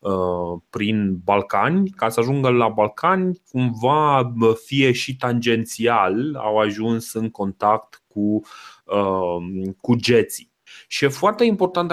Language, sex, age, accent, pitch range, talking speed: Romanian, male, 30-49, native, 115-140 Hz, 110 wpm